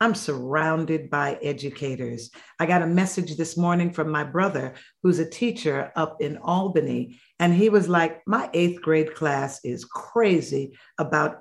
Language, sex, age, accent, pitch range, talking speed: English, female, 50-69, American, 155-185 Hz, 160 wpm